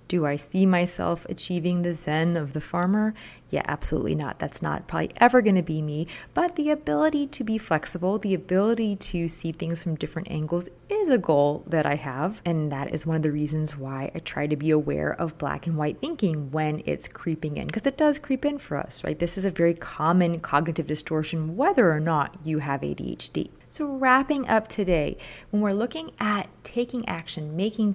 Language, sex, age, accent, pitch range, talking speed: English, female, 30-49, American, 155-205 Hz, 200 wpm